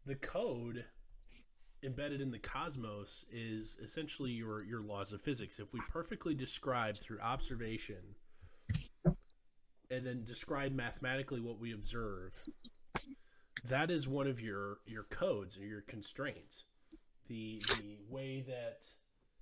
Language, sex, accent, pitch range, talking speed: English, male, American, 105-135 Hz, 125 wpm